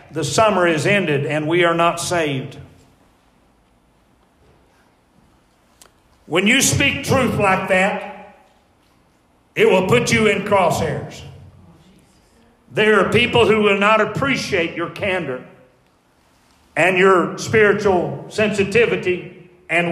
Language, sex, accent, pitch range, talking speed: English, male, American, 165-215 Hz, 105 wpm